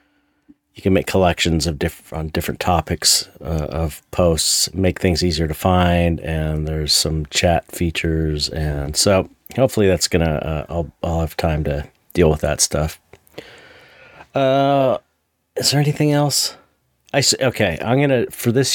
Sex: male